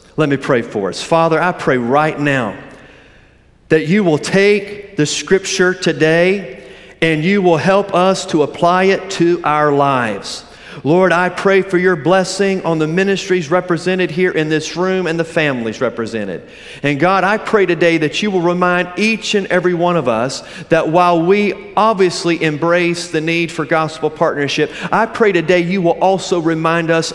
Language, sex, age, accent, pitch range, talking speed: English, male, 40-59, American, 155-195 Hz, 175 wpm